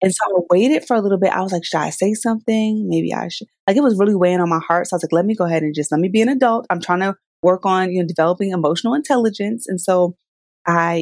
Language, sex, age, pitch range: English, female, 20-39, 170-230 Hz